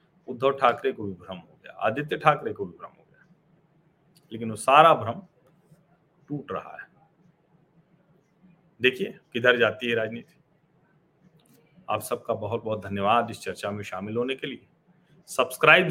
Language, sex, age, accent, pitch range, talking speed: Hindi, male, 40-59, native, 110-165 Hz, 145 wpm